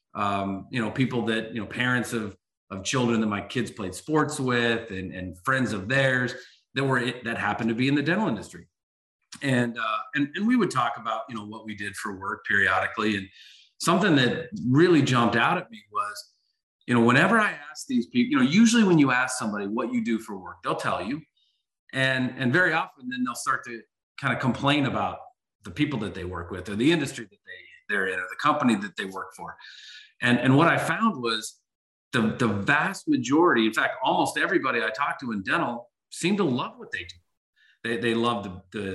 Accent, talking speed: American, 215 wpm